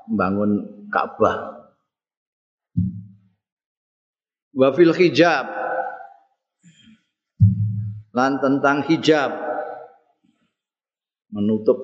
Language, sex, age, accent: Indonesian, male, 50-69, native